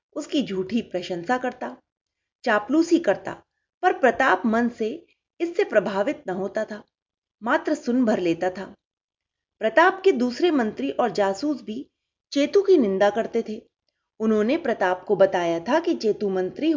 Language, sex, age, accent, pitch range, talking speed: Hindi, female, 30-49, native, 205-310 Hz, 145 wpm